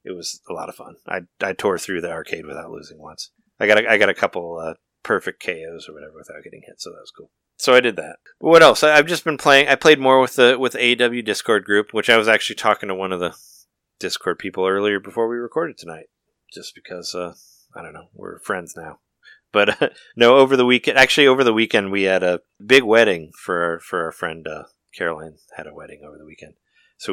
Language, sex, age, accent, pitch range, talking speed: English, male, 30-49, American, 90-130 Hz, 240 wpm